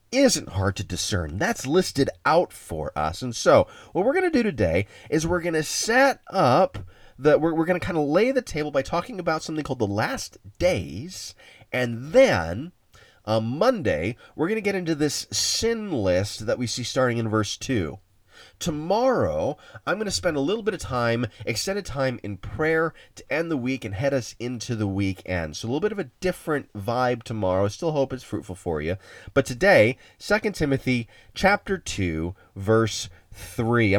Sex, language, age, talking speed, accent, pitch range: male, English, 30-49, 190 wpm, American, 105-155 Hz